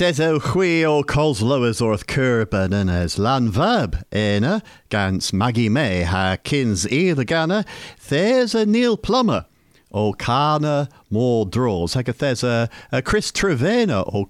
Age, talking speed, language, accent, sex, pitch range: 50-69, 135 wpm, English, British, male, 110-145 Hz